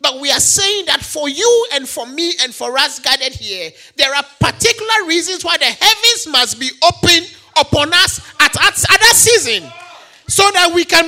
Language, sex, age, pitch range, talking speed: English, male, 40-59, 255-410 Hz, 195 wpm